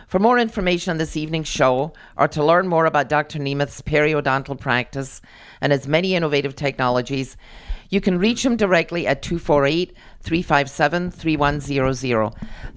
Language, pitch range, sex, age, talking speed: English, 140-170 Hz, female, 40-59, 130 wpm